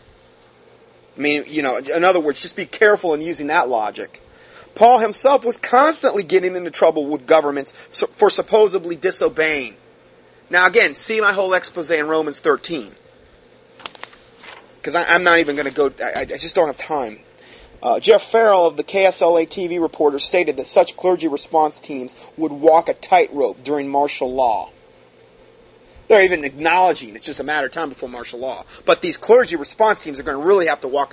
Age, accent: 30-49, American